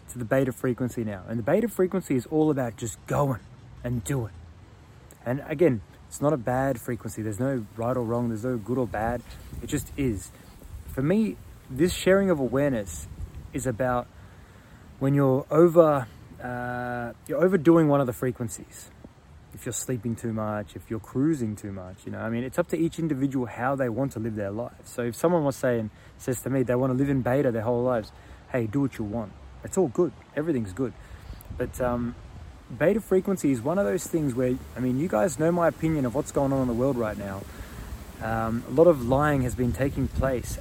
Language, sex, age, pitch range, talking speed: English, male, 20-39, 110-145 Hz, 210 wpm